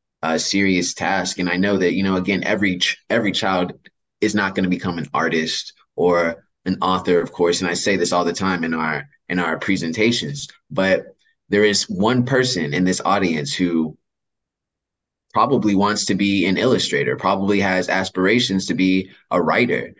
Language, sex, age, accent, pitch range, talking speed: English, male, 20-39, American, 85-95 Hz, 175 wpm